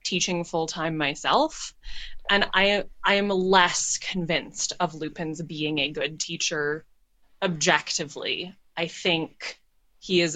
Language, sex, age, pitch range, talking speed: English, female, 20-39, 165-210 Hz, 115 wpm